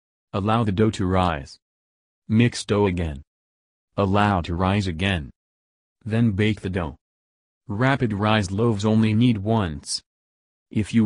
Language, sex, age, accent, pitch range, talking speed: English, male, 40-59, American, 90-110 Hz, 130 wpm